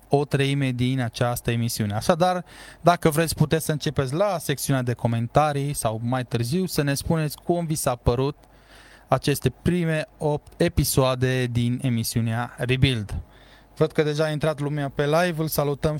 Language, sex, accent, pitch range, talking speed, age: Romanian, male, native, 115-150 Hz, 160 wpm, 20-39